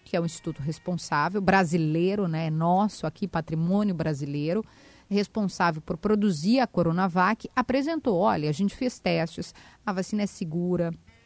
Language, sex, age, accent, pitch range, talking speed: Portuguese, female, 30-49, Brazilian, 170-230 Hz, 140 wpm